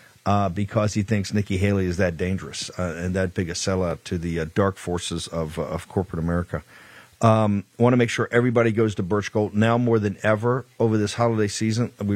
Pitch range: 95-110 Hz